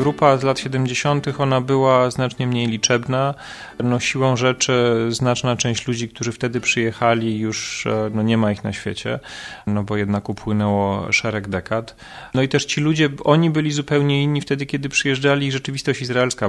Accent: native